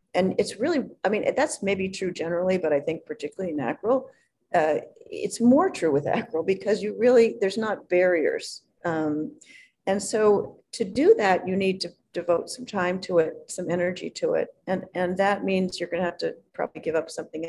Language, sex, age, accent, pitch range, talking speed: English, female, 50-69, American, 165-230 Hz, 195 wpm